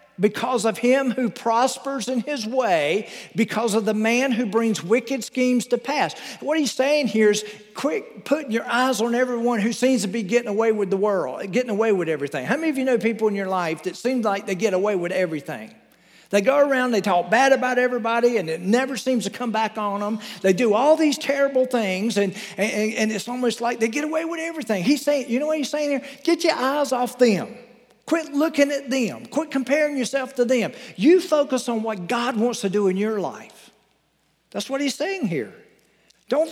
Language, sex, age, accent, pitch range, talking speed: English, male, 50-69, American, 205-270 Hz, 215 wpm